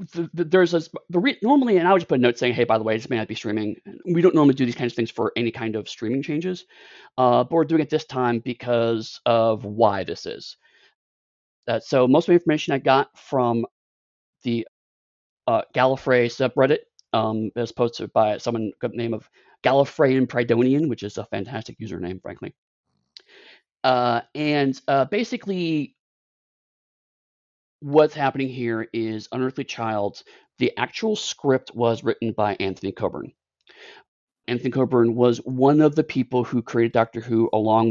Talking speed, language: 175 wpm, English